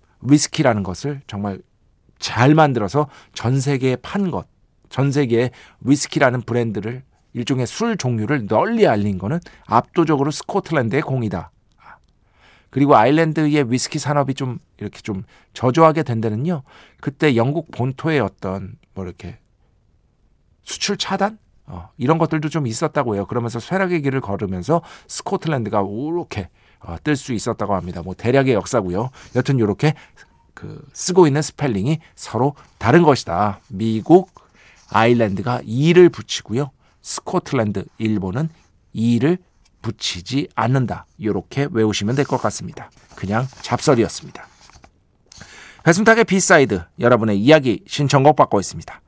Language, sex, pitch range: Korean, male, 105-150 Hz